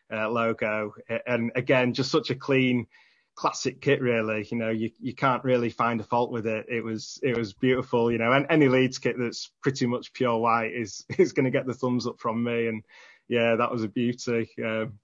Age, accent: 20-39, British